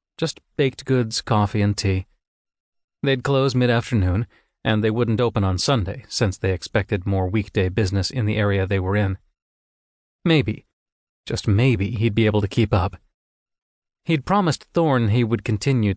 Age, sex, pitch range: 40-59, male, 100-130 Hz